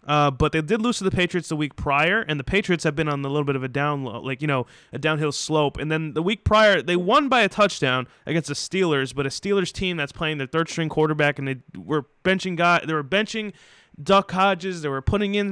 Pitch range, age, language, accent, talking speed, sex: 145-180 Hz, 20-39, English, American, 255 wpm, male